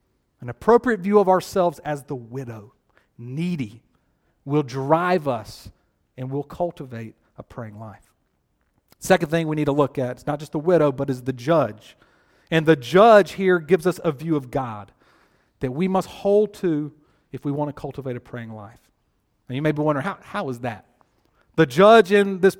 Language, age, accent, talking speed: English, 40-59, American, 185 wpm